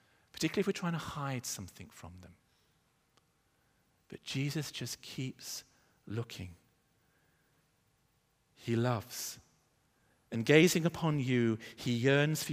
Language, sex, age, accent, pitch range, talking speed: English, male, 50-69, British, 110-155 Hz, 110 wpm